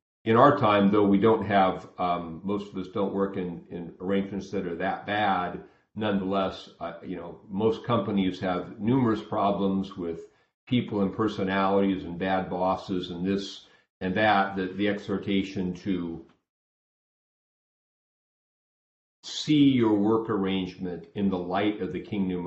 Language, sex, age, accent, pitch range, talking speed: English, male, 50-69, American, 90-105 Hz, 145 wpm